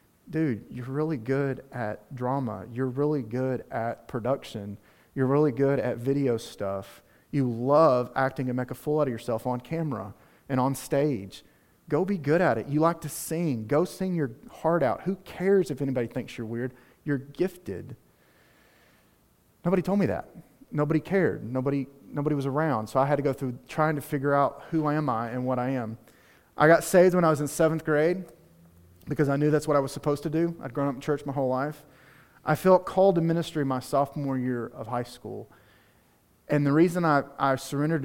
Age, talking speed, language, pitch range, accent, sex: 30-49, 200 wpm, English, 120-150 Hz, American, male